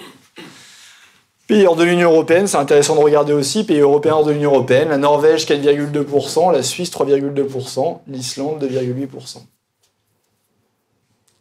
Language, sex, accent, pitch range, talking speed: French, male, French, 125-150 Hz, 120 wpm